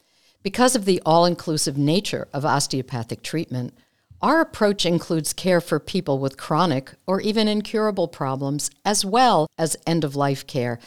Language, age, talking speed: English, 60-79, 155 wpm